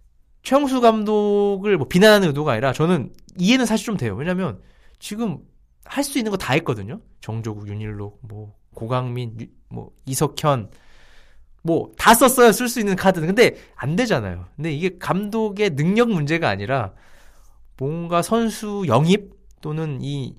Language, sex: Korean, male